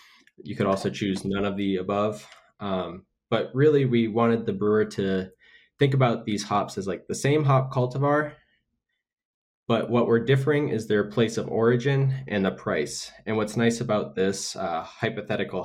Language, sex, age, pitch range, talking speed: English, male, 20-39, 95-115 Hz, 175 wpm